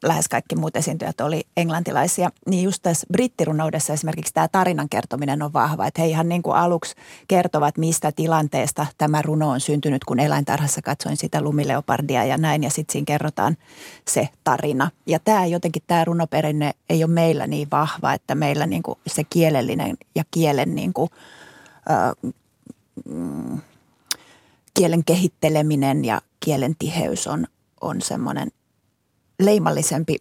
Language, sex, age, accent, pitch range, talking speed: Finnish, female, 30-49, native, 150-170 Hz, 140 wpm